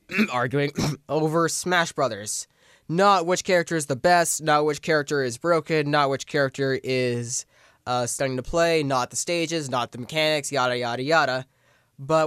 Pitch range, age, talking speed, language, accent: 135-170 Hz, 20-39, 160 wpm, English, American